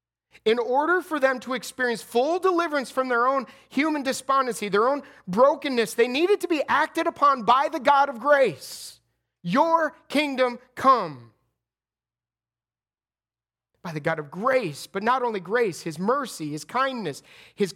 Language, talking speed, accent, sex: English, 150 wpm, American, male